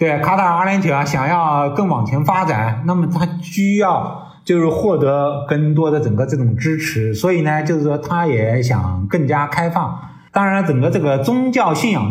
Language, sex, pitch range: Chinese, male, 130-180 Hz